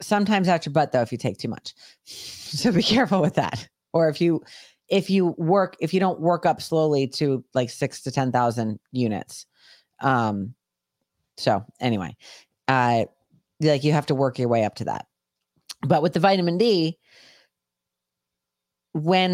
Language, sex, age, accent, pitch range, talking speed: English, female, 40-59, American, 120-180 Hz, 165 wpm